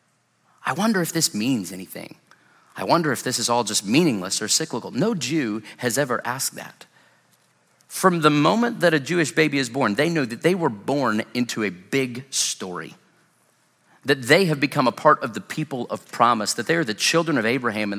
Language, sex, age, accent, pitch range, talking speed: English, male, 30-49, American, 115-165 Hz, 200 wpm